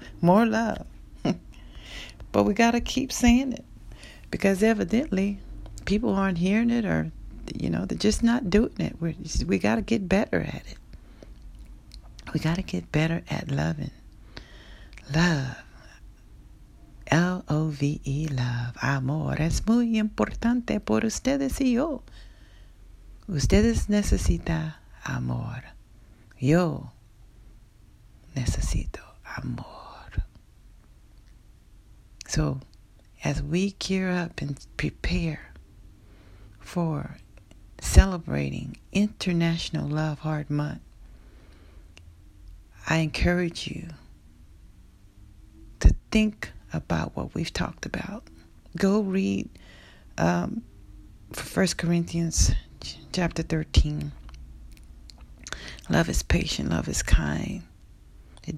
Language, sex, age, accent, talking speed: English, female, 60-79, American, 95 wpm